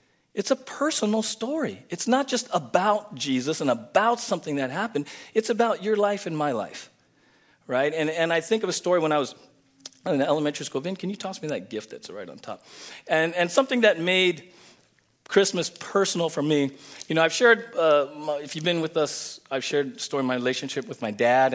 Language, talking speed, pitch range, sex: English, 210 wpm, 135-175 Hz, male